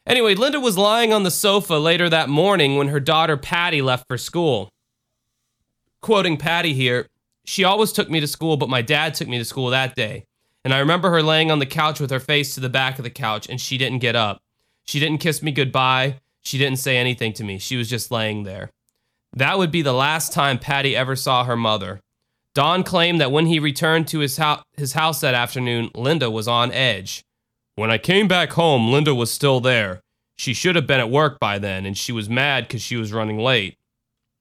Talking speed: 220 wpm